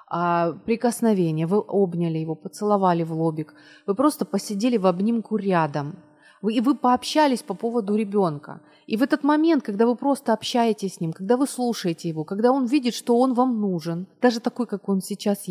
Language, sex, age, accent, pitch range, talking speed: Ukrainian, female, 30-49, native, 180-240 Hz, 180 wpm